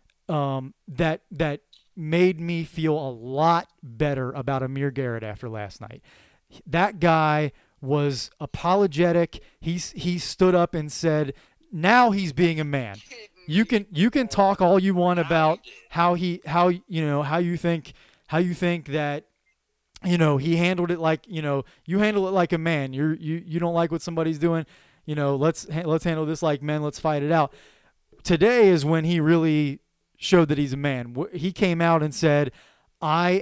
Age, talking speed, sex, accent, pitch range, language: 30-49, 180 wpm, male, American, 150-175 Hz, English